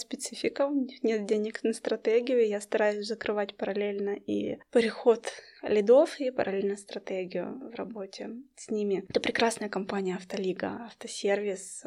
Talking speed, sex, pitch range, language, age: 135 wpm, female, 195-225 Hz, Russian, 20-39